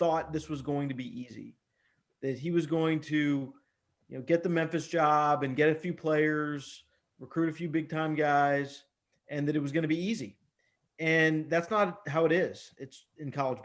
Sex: male